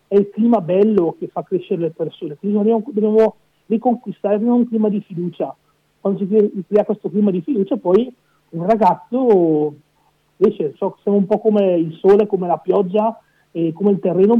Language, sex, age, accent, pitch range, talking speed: Italian, male, 40-59, native, 180-215 Hz, 185 wpm